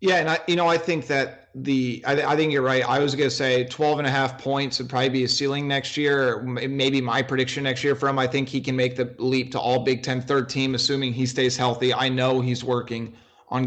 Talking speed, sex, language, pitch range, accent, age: 265 wpm, male, English, 125-145 Hz, American, 30-49